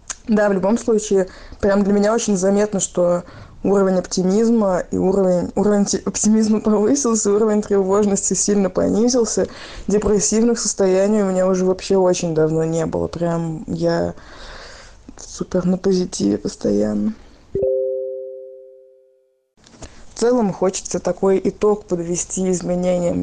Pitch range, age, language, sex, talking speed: 180-210 Hz, 20-39, Russian, female, 115 wpm